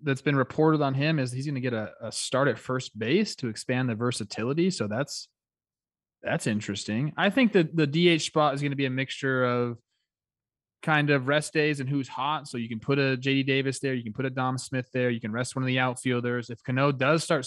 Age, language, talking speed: 20-39, English, 240 wpm